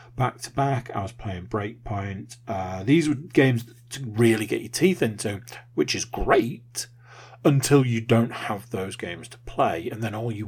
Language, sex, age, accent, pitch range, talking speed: English, male, 40-59, British, 115-130 Hz, 180 wpm